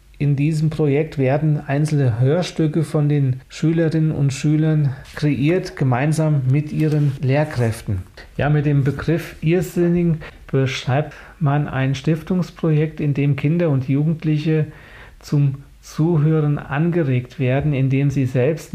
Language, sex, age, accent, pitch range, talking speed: German, male, 40-59, German, 135-155 Hz, 120 wpm